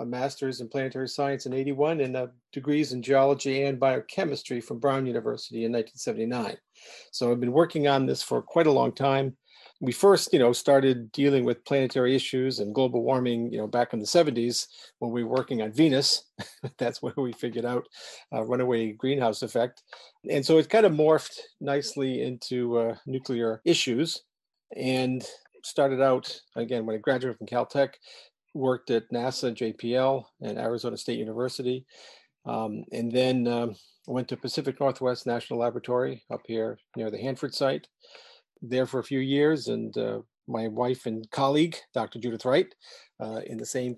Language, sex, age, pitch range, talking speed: English, male, 40-59, 120-140 Hz, 170 wpm